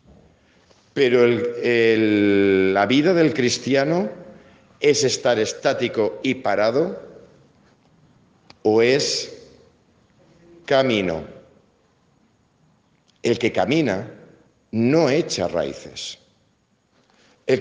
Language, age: Spanish, 50-69